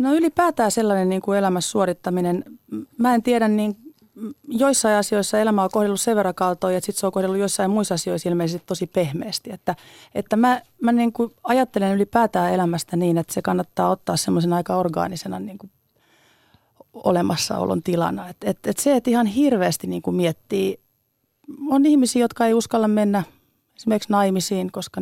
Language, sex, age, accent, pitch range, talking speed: Finnish, female, 30-49, native, 180-235 Hz, 165 wpm